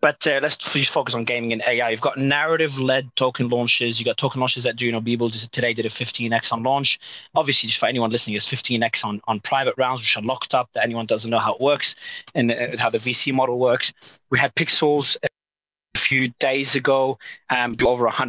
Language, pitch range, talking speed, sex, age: English, 120-140 Hz, 230 wpm, male, 30-49